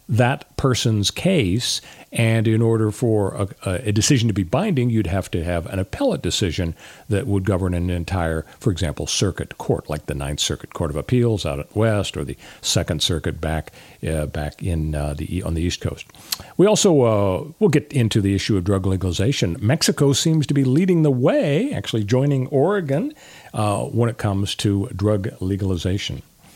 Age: 50-69